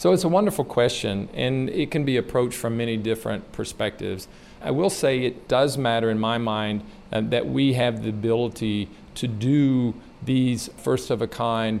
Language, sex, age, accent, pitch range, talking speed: English, male, 50-69, American, 115-145 Hz, 185 wpm